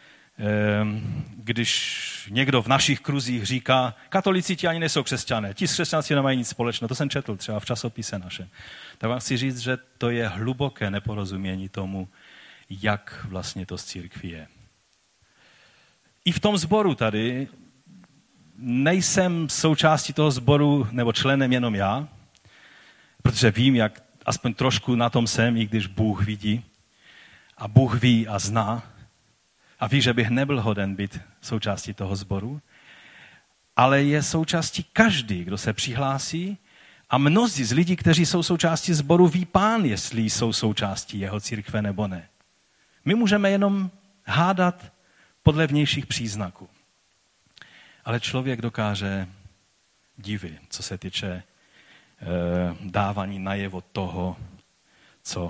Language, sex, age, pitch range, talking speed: Czech, male, 40-59, 100-145 Hz, 135 wpm